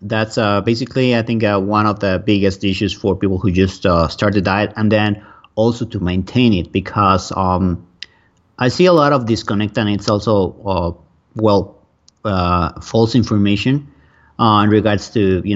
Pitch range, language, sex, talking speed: 90-110 Hz, English, male, 175 wpm